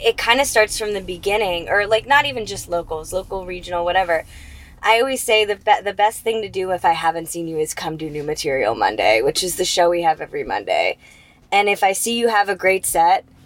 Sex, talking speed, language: female, 240 wpm, English